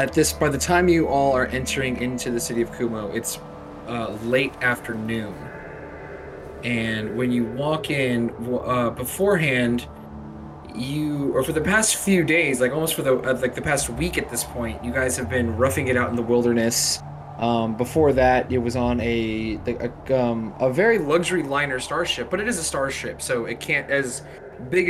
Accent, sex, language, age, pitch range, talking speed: American, male, English, 20-39, 115-135 Hz, 185 wpm